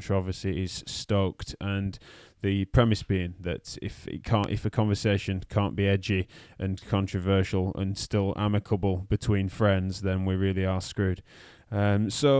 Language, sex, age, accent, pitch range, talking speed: English, male, 20-39, British, 95-125 Hz, 150 wpm